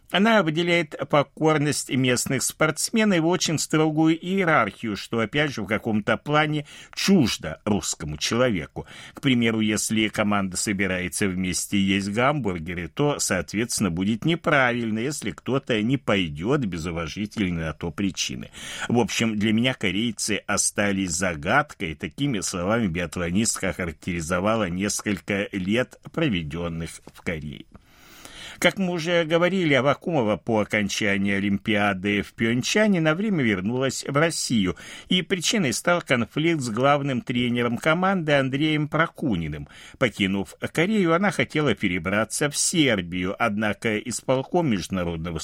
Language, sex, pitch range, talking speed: Russian, male, 100-155 Hz, 120 wpm